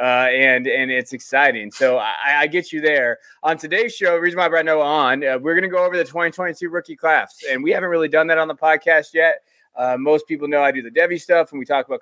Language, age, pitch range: English, 20-39, 135-175 Hz